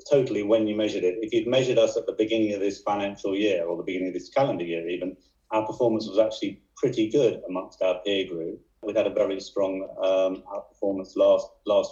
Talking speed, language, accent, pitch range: 215 wpm, English, British, 100-140 Hz